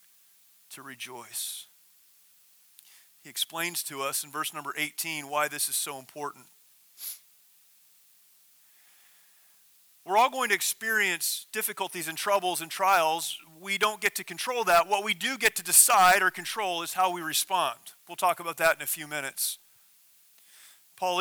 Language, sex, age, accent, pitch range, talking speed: English, male, 30-49, American, 140-180 Hz, 145 wpm